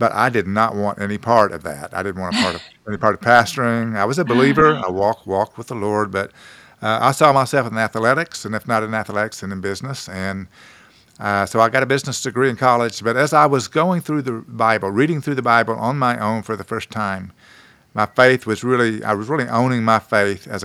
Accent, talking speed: American, 240 wpm